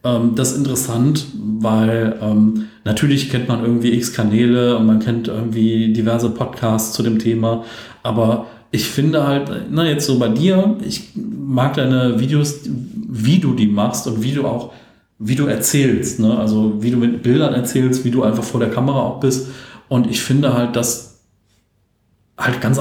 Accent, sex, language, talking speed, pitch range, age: German, male, German, 170 wpm, 115-135 Hz, 40-59